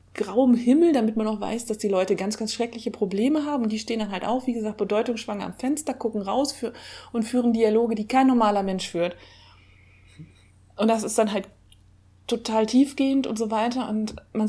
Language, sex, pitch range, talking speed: German, female, 195-235 Hz, 200 wpm